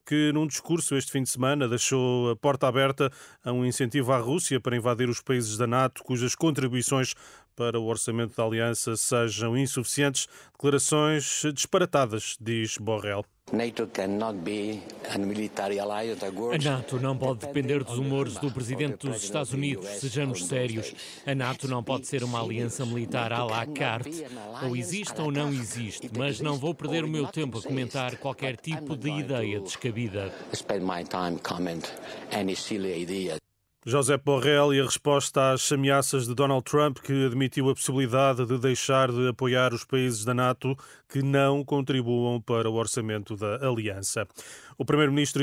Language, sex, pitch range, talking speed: Portuguese, male, 120-140 Hz, 145 wpm